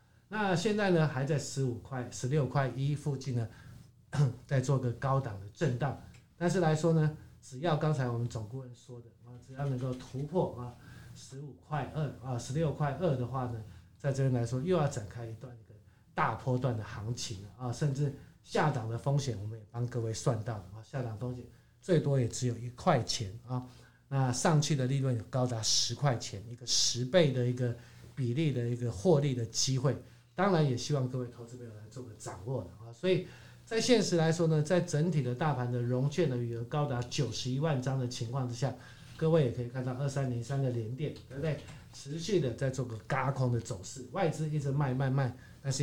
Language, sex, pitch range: Chinese, male, 120-145 Hz